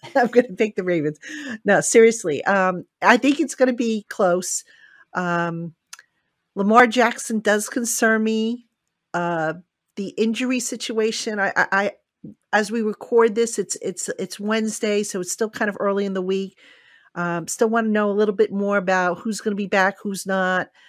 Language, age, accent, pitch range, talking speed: English, 50-69, American, 185-225 Hz, 180 wpm